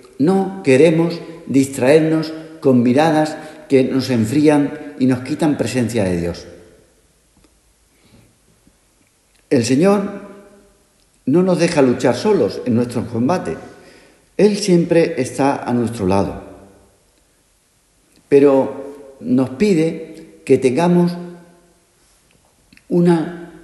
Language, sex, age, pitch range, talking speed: Spanish, male, 60-79, 130-175 Hz, 90 wpm